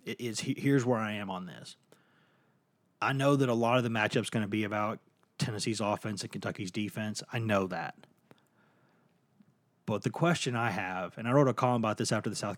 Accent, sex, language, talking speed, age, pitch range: American, male, English, 205 wpm, 30-49, 110-140 Hz